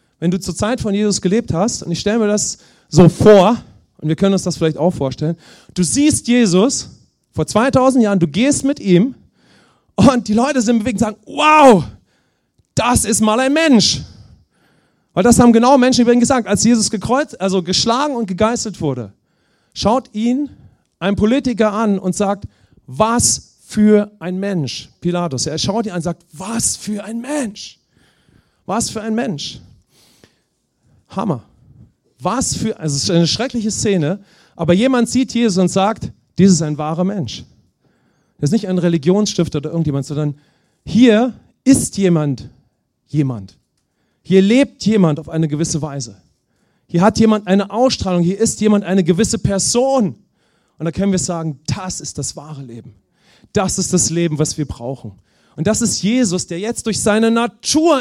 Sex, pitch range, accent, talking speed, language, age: male, 165-230 Hz, German, 170 wpm, English, 40-59